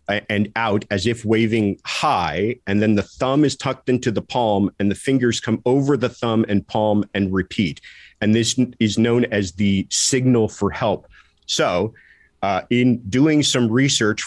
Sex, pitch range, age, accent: male, 100-125 Hz, 40-59, American